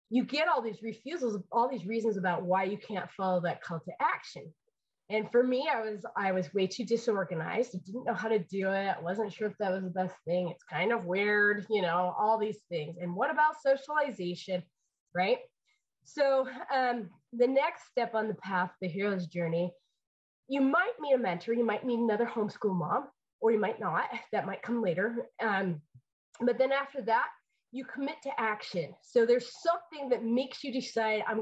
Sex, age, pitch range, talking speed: female, 20-39, 195-270 Hz, 200 wpm